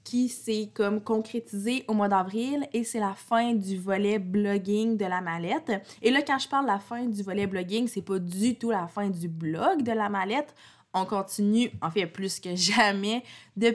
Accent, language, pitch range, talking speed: Canadian, French, 195-225 Hz, 205 wpm